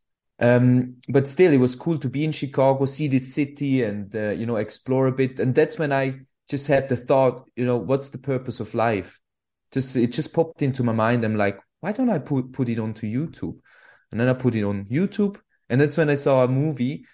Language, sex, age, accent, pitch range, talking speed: English, male, 20-39, German, 120-145 Hz, 230 wpm